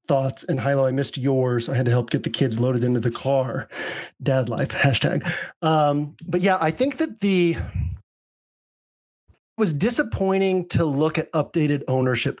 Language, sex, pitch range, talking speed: English, male, 130-165 Hz, 170 wpm